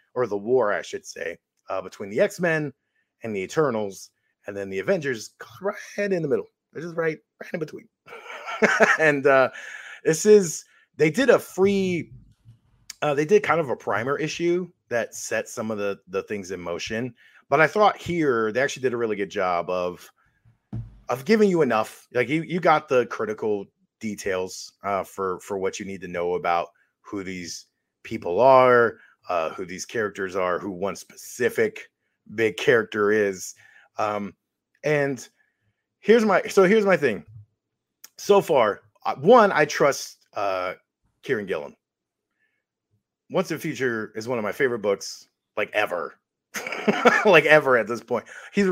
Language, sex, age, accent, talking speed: English, male, 30-49, American, 165 wpm